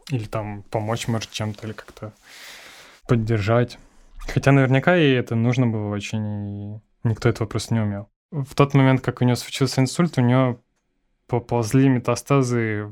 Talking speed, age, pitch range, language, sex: 155 wpm, 20-39, 115-130 Hz, Ukrainian, male